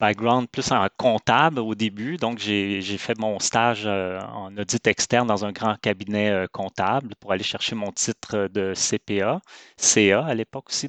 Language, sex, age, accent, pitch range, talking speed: French, male, 30-49, Canadian, 100-115 Hz, 180 wpm